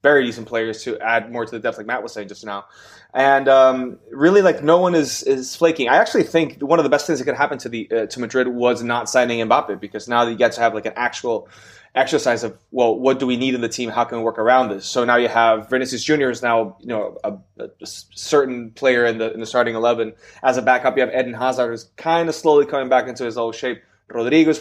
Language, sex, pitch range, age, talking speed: English, male, 115-135 Hz, 20-39, 260 wpm